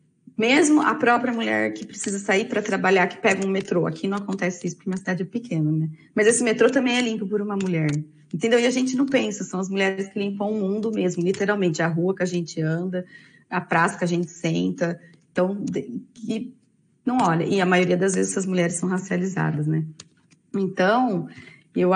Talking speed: 200 wpm